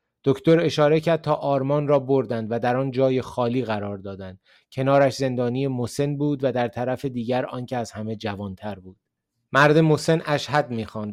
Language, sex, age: Persian, male, 30-49